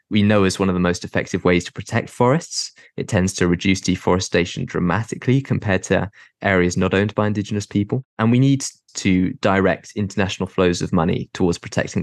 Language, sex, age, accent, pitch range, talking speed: English, male, 20-39, British, 90-105 Hz, 185 wpm